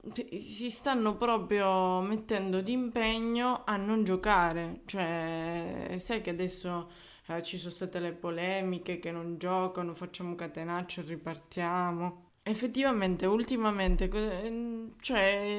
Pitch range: 175-215 Hz